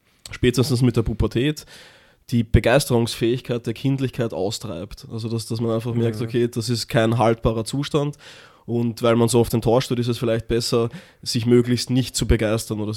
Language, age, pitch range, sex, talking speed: German, 20-39, 115-125 Hz, male, 170 wpm